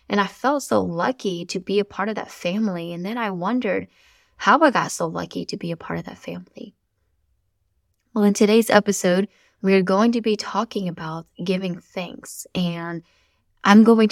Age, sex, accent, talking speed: 10-29, female, American, 185 wpm